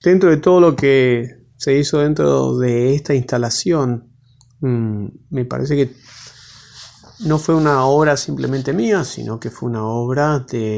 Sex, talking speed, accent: male, 145 wpm, Argentinian